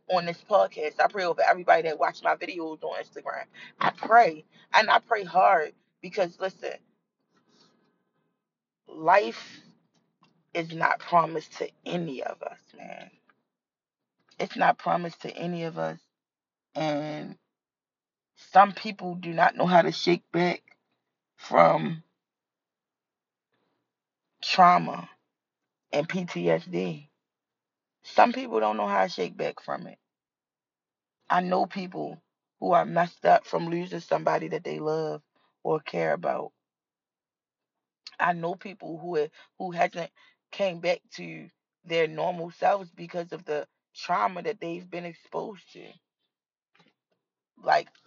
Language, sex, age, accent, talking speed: English, female, 20-39, American, 125 wpm